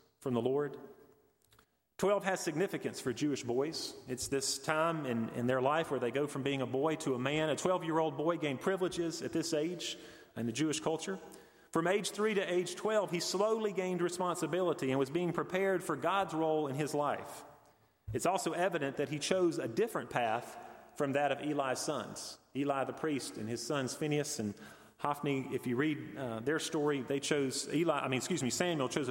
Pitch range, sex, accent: 130-170 Hz, male, American